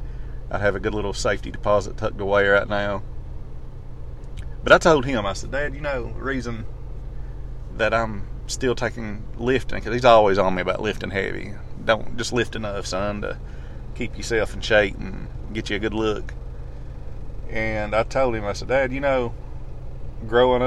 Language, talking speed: English, 175 wpm